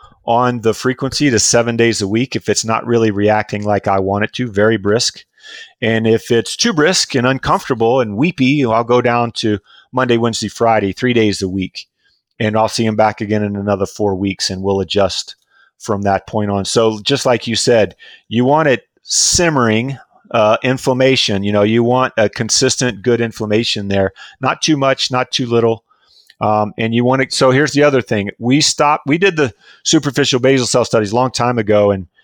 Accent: American